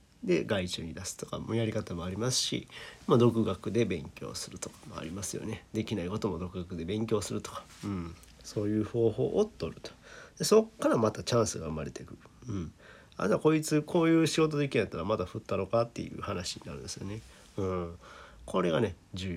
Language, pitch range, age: Japanese, 95-125 Hz, 40-59